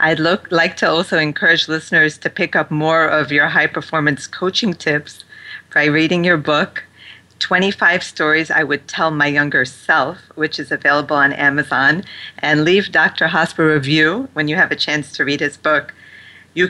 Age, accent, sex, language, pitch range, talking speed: 40-59, American, female, English, 150-175 Hz, 175 wpm